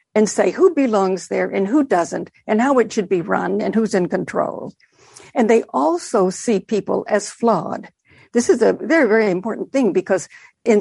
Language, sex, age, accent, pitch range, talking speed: English, female, 60-79, American, 195-245 Hz, 190 wpm